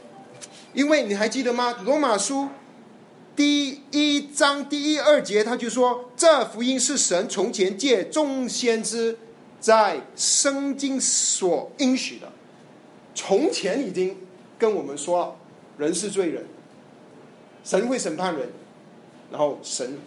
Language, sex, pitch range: Chinese, male, 175-275 Hz